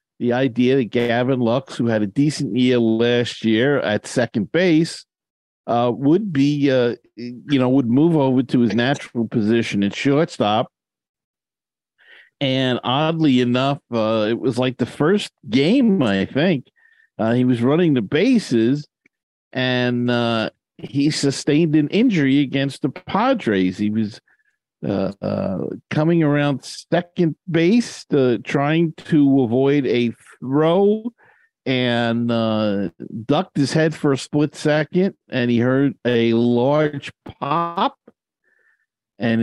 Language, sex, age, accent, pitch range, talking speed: English, male, 50-69, American, 120-155 Hz, 135 wpm